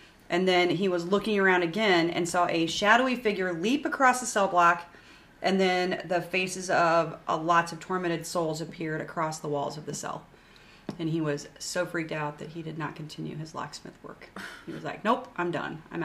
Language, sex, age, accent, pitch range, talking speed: English, female, 30-49, American, 165-190 Hz, 205 wpm